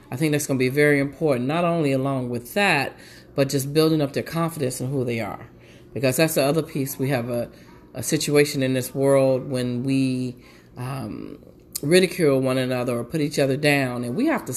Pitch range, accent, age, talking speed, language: 125-160 Hz, American, 40-59, 210 wpm, English